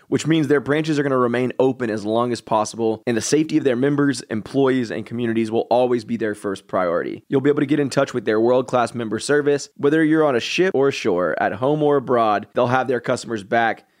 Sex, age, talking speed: male, 20-39, 240 wpm